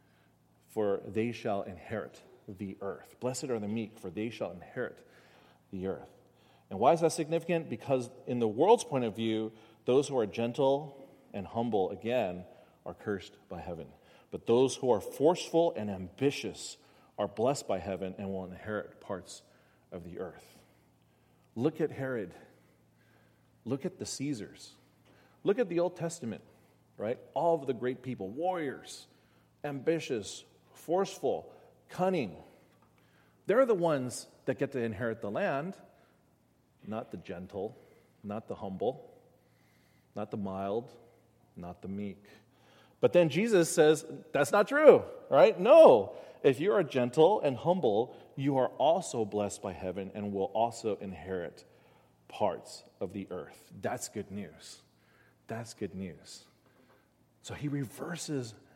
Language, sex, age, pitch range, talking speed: English, male, 40-59, 100-145 Hz, 140 wpm